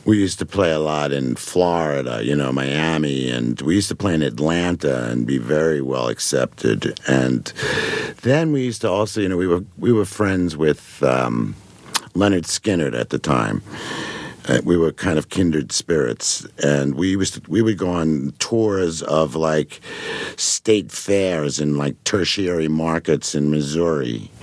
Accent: American